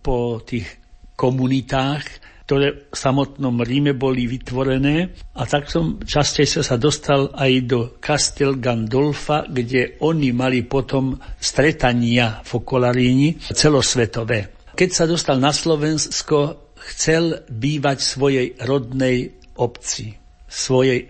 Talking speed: 110 wpm